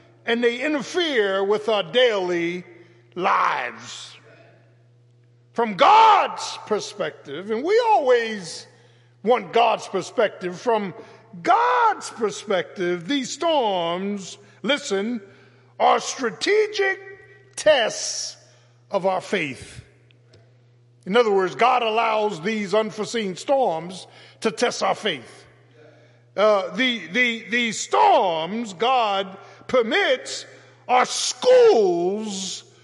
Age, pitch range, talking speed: 50-69, 160-250 Hz, 90 wpm